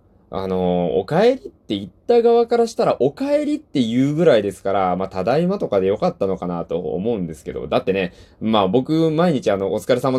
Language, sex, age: Japanese, male, 20-39